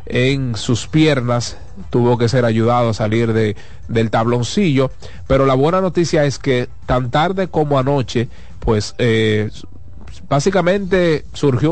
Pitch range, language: 115-135 Hz, Spanish